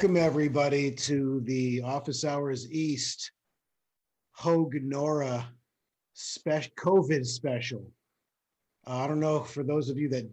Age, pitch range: 40-59, 110-135 Hz